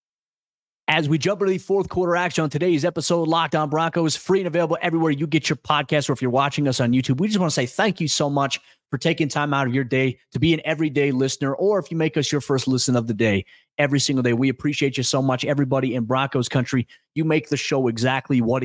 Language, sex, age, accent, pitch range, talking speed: English, male, 30-49, American, 120-150 Hz, 255 wpm